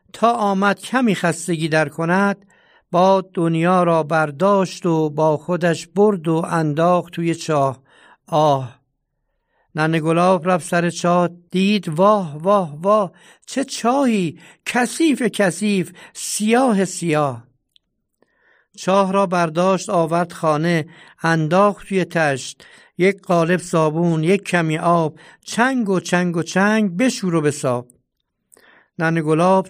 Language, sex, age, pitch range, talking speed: Persian, male, 60-79, 165-210 Hz, 120 wpm